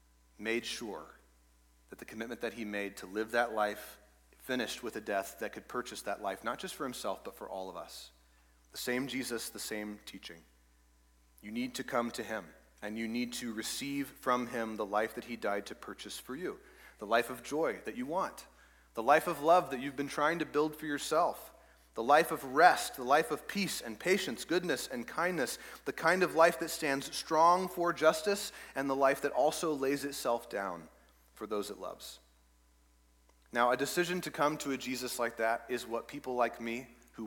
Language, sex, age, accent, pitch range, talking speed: English, male, 30-49, American, 100-140 Hz, 205 wpm